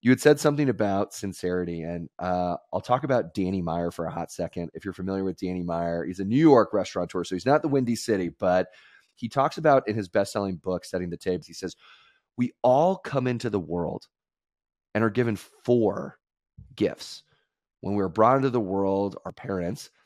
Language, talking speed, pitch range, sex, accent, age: English, 195 wpm, 95-135 Hz, male, American, 30-49